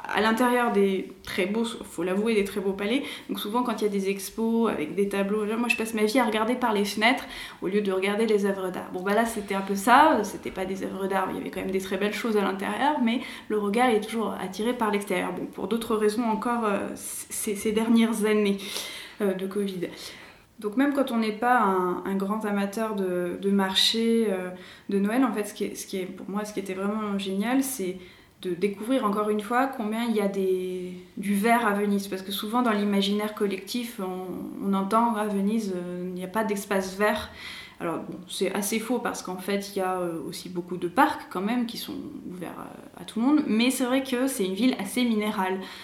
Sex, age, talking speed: female, 20-39, 235 wpm